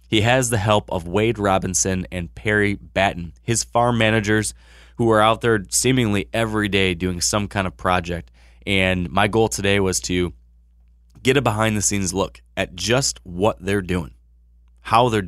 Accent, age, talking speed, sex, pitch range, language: American, 20-39, 165 wpm, male, 90-110 Hz, English